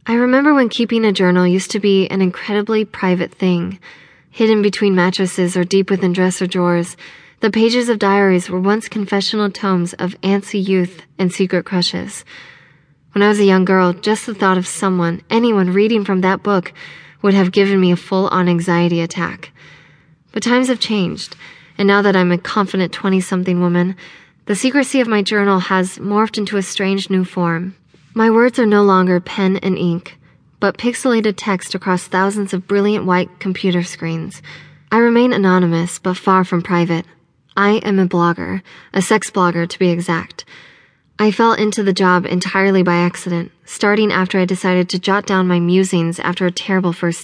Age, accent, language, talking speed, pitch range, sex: 20-39, American, English, 175 wpm, 175-205 Hz, female